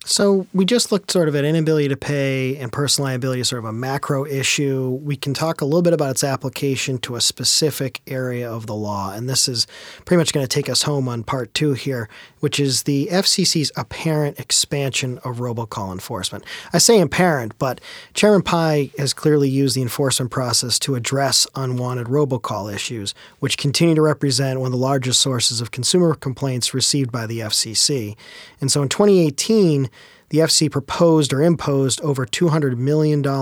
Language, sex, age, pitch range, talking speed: English, male, 40-59, 125-155 Hz, 185 wpm